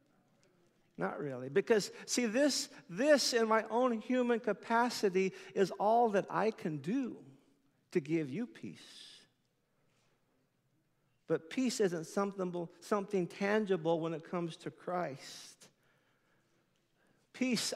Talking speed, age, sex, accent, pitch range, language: 110 wpm, 50-69, male, American, 175-220 Hz, English